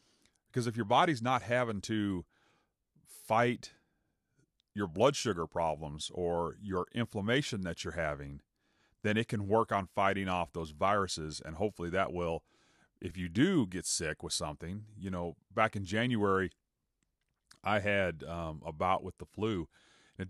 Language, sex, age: English, male, 30-49